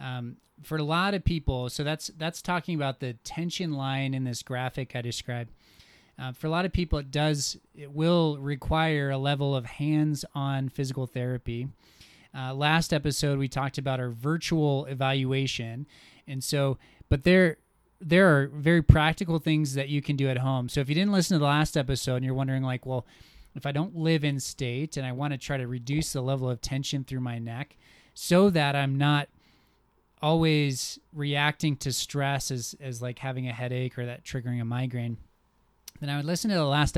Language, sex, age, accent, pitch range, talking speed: English, male, 20-39, American, 130-155 Hz, 195 wpm